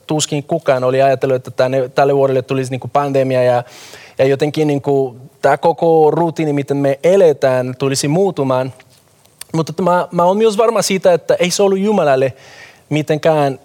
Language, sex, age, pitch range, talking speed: Finnish, male, 20-39, 140-180 Hz, 160 wpm